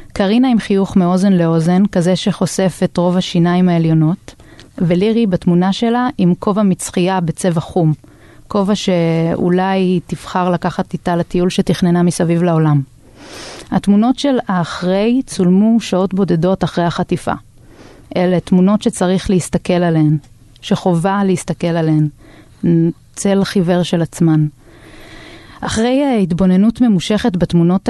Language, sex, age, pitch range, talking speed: Hebrew, female, 30-49, 175-205 Hz, 110 wpm